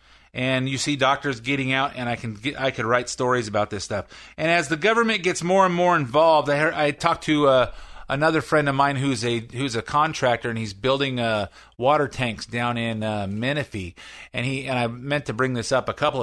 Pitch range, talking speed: 130-175 Hz, 225 wpm